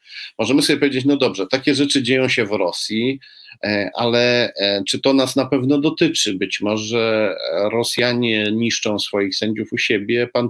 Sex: male